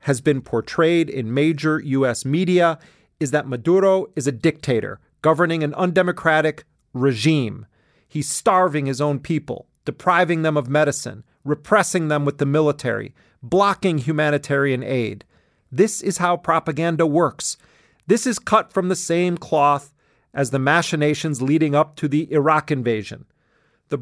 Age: 40-59